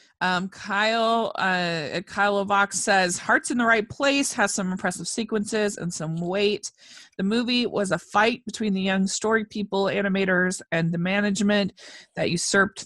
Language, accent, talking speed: English, American, 160 wpm